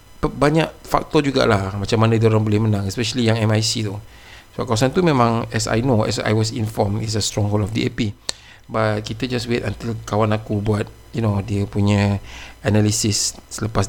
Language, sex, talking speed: Malay, male, 195 wpm